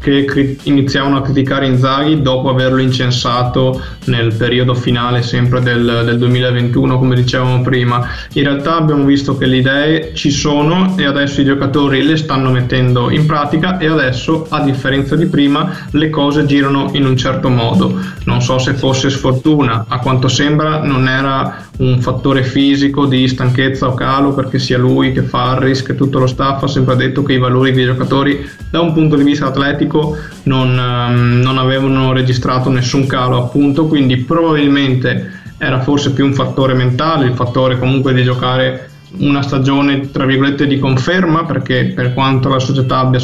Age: 20-39